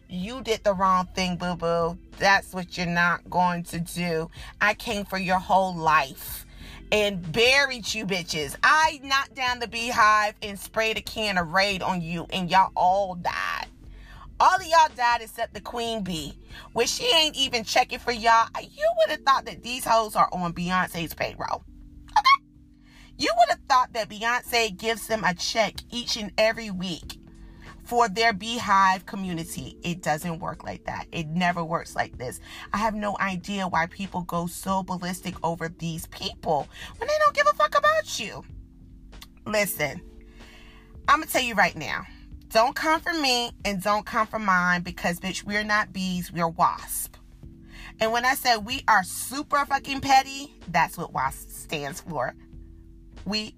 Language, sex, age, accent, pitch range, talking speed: English, female, 30-49, American, 175-235 Hz, 175 wpm